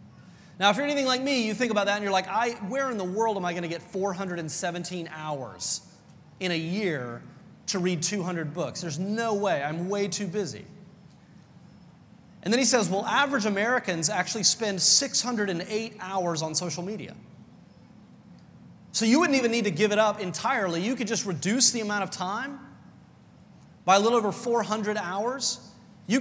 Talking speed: 180 wpm